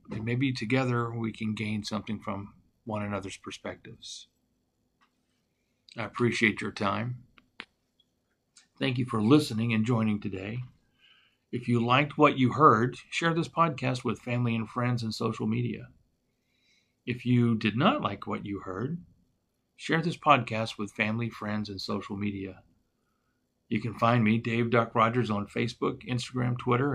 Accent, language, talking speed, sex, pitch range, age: American, English, 145 wpm, male, 110-125 Hz, 50-69